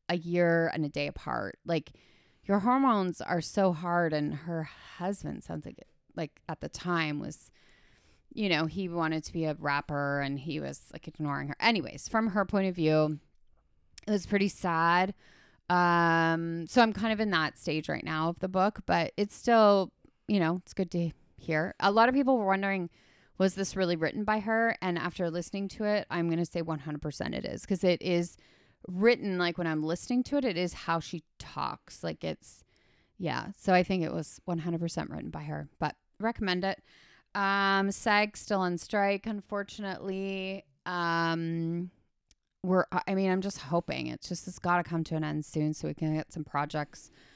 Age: 30-49